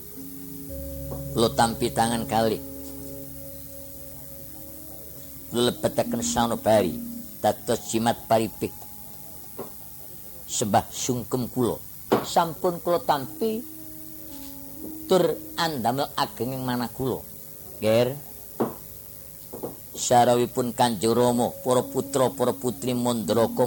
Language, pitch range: Indonesian, 115-180 Hz